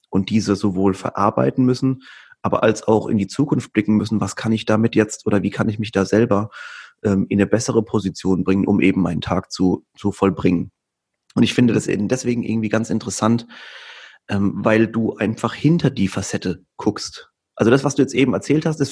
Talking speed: 205 wpm